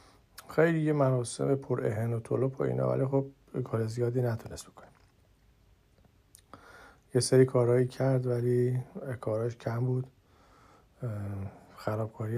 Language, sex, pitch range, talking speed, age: Persian, male, 105-130 Hz, 115 wpm, 50-69